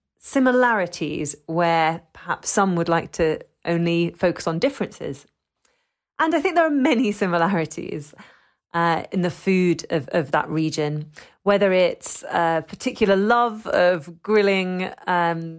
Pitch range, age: 170-205 Hz, 30-49